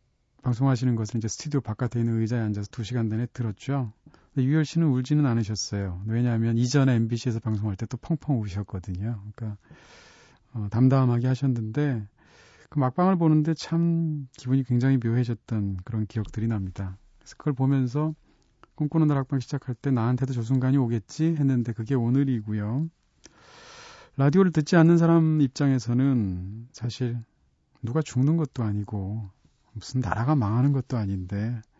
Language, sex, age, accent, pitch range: Korean, male, 40-59, native, 115-145 Hz